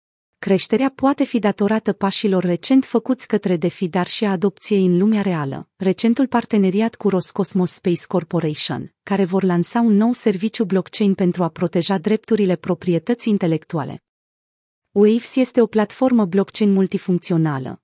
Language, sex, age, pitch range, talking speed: Romanian, female, 30-49, 180-225 Hz, 135 wpm